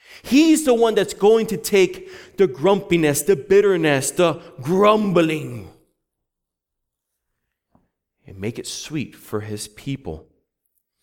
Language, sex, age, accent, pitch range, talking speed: English, male, 30-49, American, 110-170 Hz, 110 wpm